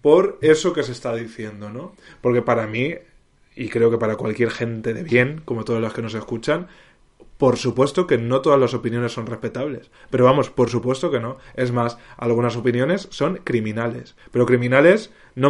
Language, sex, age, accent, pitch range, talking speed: Spanish, male, 20-39, Spanish, 120-145 Hz, 185 wpm